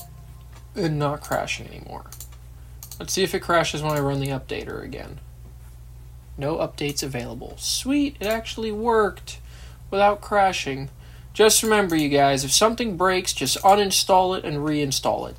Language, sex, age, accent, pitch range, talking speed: English, male, 20-39, American, 130-190 Hz, 145 wpm